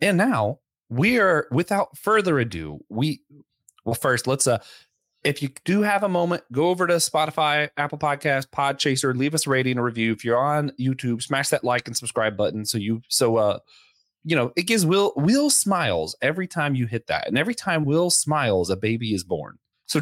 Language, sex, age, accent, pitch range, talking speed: English, male, 30-49, American, 125-175 Hz, 200 wpm